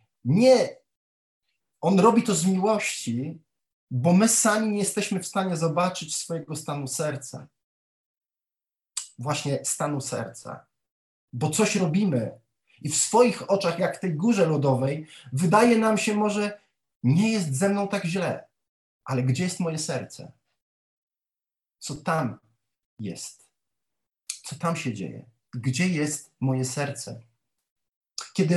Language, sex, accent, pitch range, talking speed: Polish, male, native, 130-180 Hz, 125 wpm